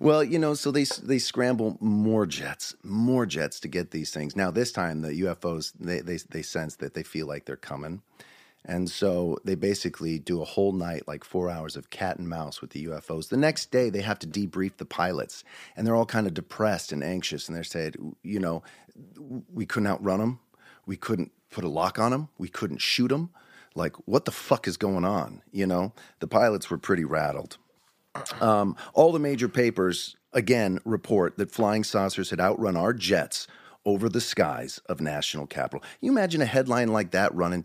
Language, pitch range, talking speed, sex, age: English, 85-120 Hz, 200 wpm, male, 30-49